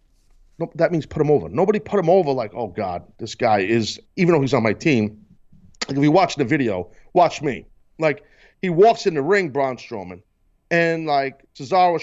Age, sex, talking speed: 40-59, male, 200 wpm